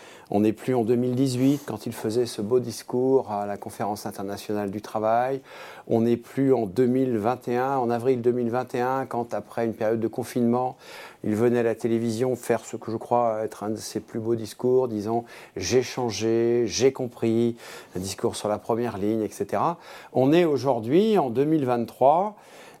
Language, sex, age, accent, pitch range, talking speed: French, male, 50-69, French, 115-135 Hz, 170 wpm